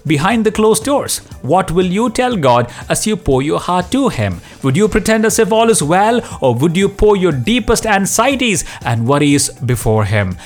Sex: male